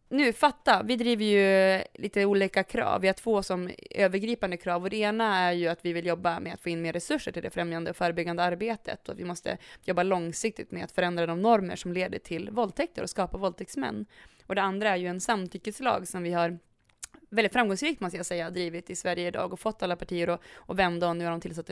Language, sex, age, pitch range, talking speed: English, female, 20-39, 180-220 Hz, 235 wpm